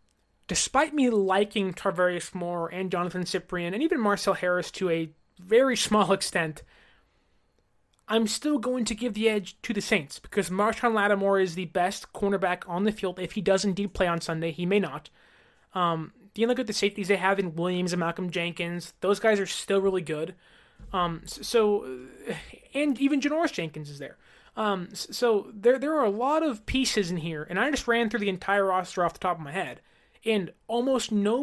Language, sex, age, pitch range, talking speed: English, male, 20-39, 180-230 Hz, 195 wpm